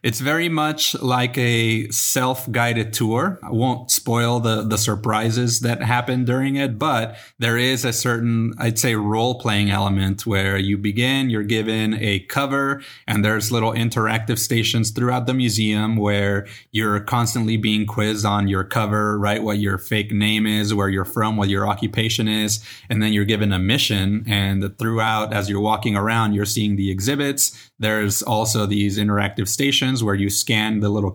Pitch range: 105-120 Hz